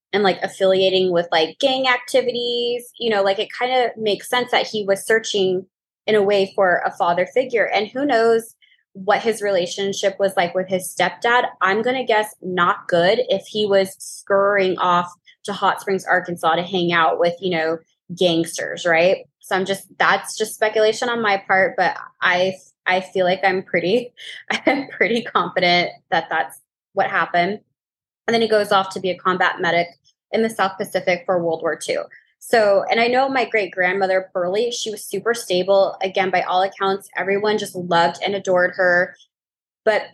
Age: 20-39